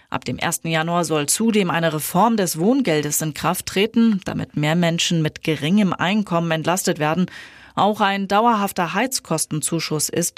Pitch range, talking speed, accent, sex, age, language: 165-210 Hz, 150 wpm, German, female, 30-49, German